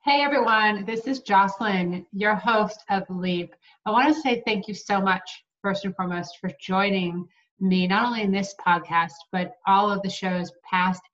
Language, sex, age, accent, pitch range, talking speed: English, female, 30-49, American, 180-205 Hz, 180 wpm